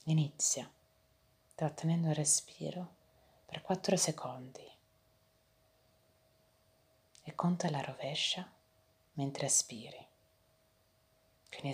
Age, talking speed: 30-49, 70 wpm